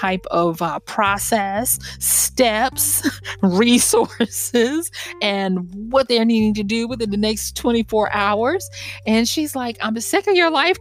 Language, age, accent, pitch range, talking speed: English, 30-49, American, 160-220 Hz, 140 wpm